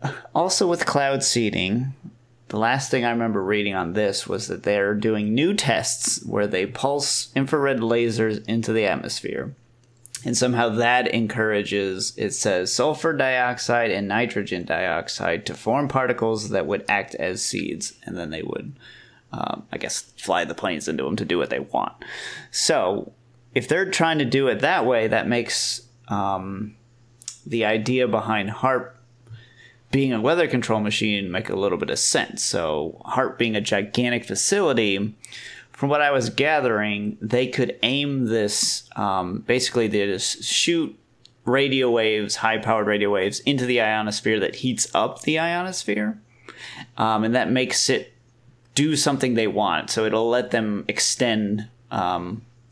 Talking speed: 155 wpm